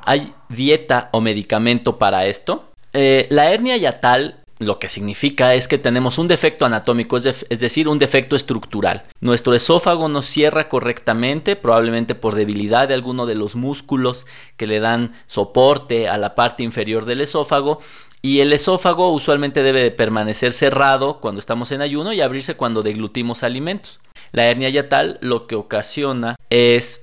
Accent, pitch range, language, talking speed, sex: Mexican, 115-140 Hz, Spanish, 160 wpm, male